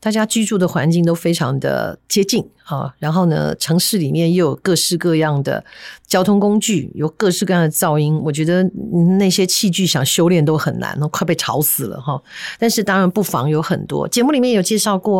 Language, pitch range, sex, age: Chinese, 155-195 Hz, female, 50-69